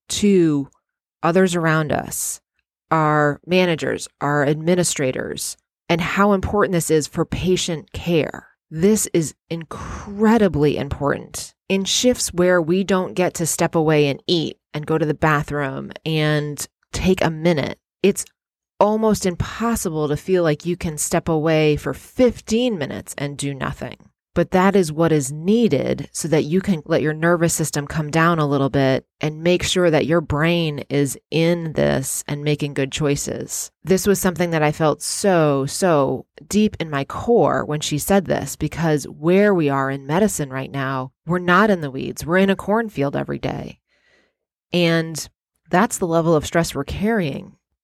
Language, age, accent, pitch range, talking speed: English, 30-49, American, 150-185 Hz, 165 wpm